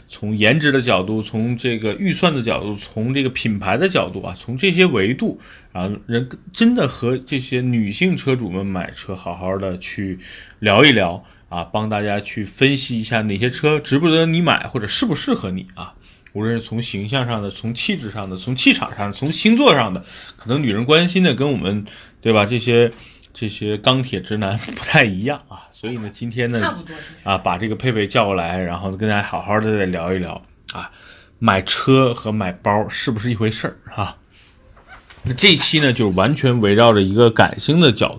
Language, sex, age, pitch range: Chinese, male, 20-39, 100-130 Hz